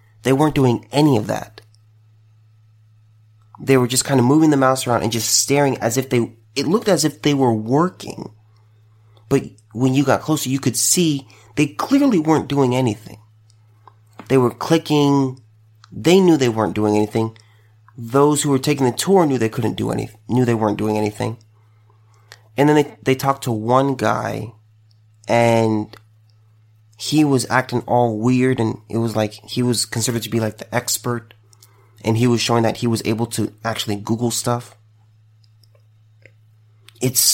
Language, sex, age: English, male, 30-49